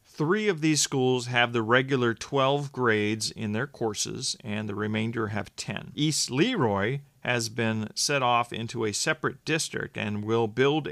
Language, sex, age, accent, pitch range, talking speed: English, male, 40-59, American, 110-145 Hz, 165 wpm